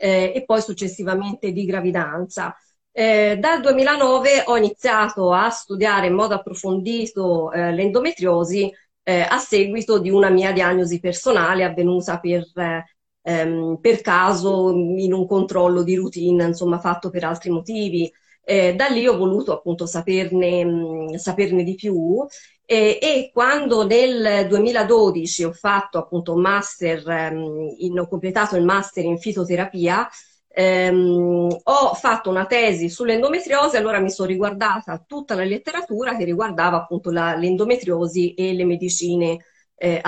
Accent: native